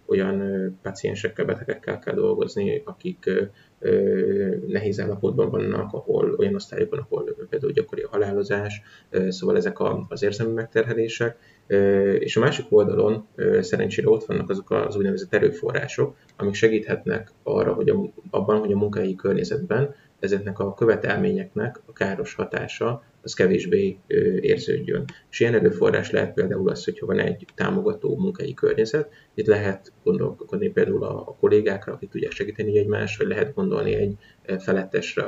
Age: 20-39